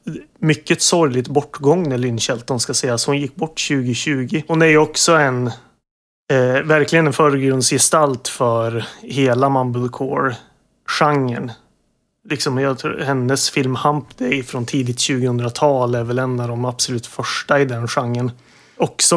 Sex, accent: male, native